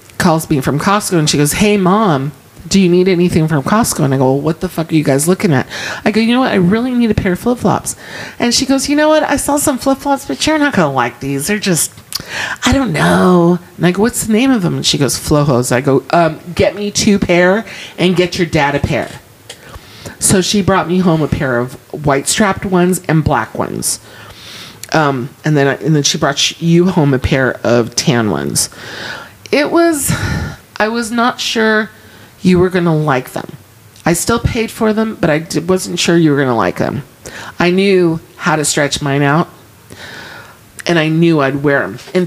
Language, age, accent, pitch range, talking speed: English, 40-59, American, 145-205 Hz, 225 wpm